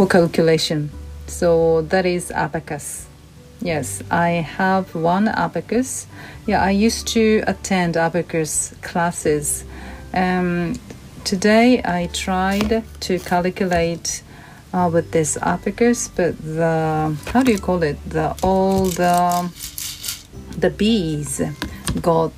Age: 40-59